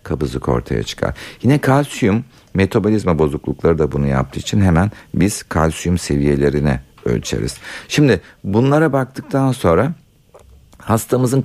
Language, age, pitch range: Turkish, 60-79, 70-110 Hz